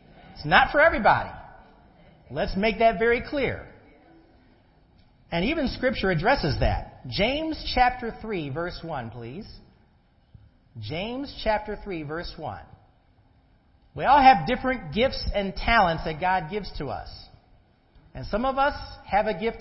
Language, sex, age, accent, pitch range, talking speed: English, male, 50-69, American, 165-255 Hz, 135 wpm